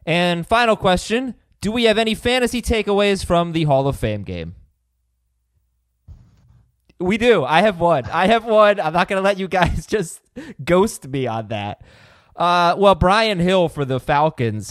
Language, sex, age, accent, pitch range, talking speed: English, male, 20-39, American, 125-210 Hz, 170 wpm